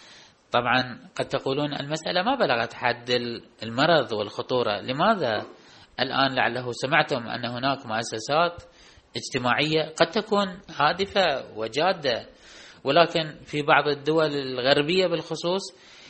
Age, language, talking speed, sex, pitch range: 30-49, Arabic, 100 wpm, male, 125-160 Hz